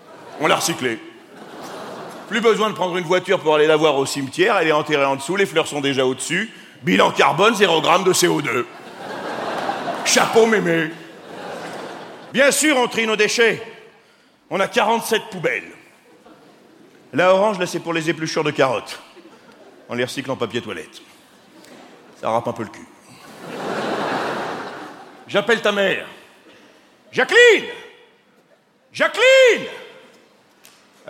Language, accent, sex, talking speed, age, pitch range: French, French, male, 135 wpm, 50-69, 145-225 Hz